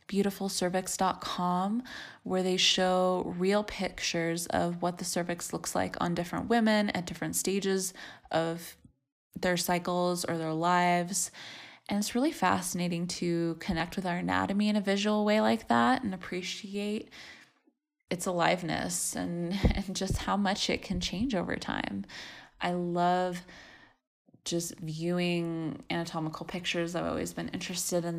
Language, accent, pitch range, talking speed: English, American, 165-205 Hz, 140 wpm